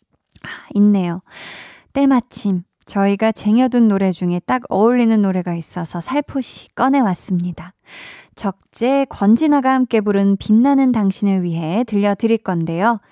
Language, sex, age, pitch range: Korean, female, 20-39, 185-240 Hz